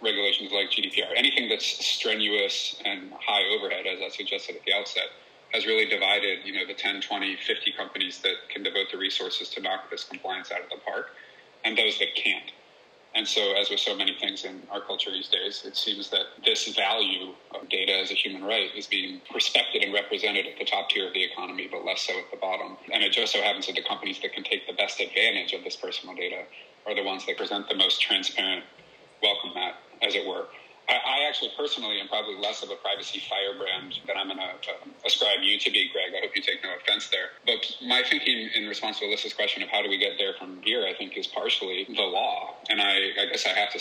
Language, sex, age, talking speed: English, male, 30-49, 230 wpm